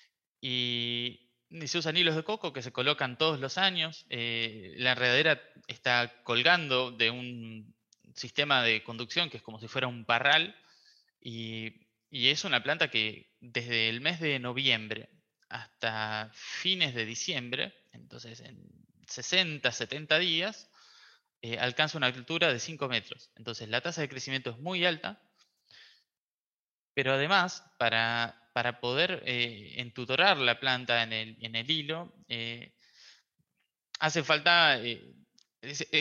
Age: 20-39